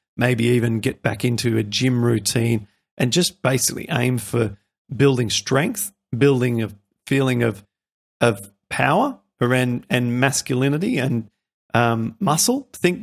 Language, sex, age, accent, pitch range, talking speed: English, male, 40-59, Australian, 115-135 Hz, 125 wpm